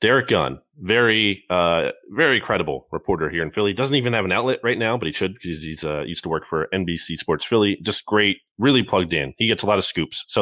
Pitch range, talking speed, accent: 100-150 Hz, 235 wpm, American